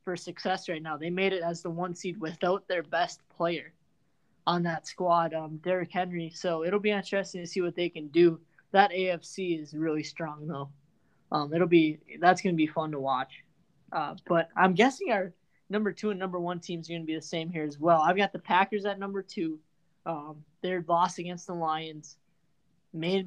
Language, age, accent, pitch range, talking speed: English, 20-39, American, 160-185 Hz, 210 wpm